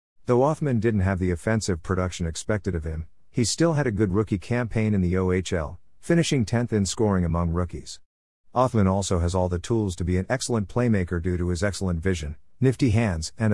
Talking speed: 200 wpm